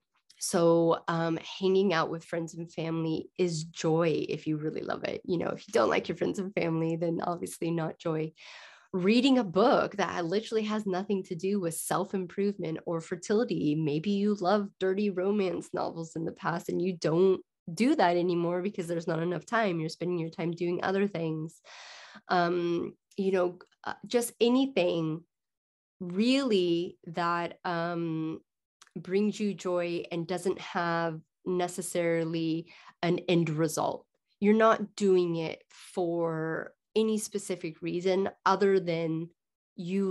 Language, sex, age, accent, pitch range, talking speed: English, female, 20-39, American, 165-190 Hz, 145 wpm